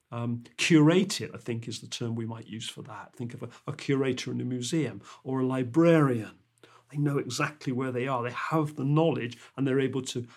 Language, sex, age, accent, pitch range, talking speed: English, male, 40-59, British, 125-155 Hz, 215 wpm